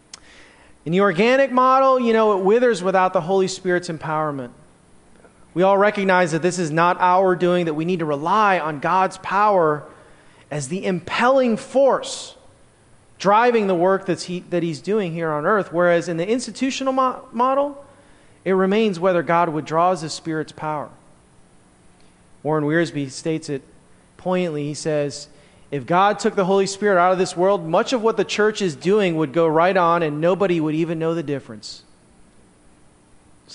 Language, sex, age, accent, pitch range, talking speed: English, male, 30-49, American, 140-190 Hz, 165 wpm